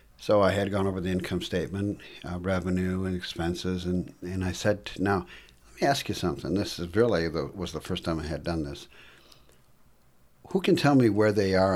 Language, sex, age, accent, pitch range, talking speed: English, male, 60-79, American, 85-105 Hz, 215 wpm